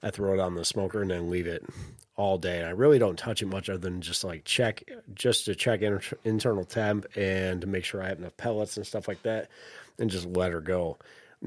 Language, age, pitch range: English, 30-49, 90-105 Hz